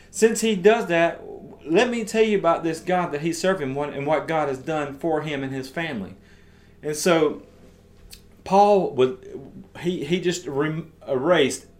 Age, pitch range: 30-49, 120-180 Hz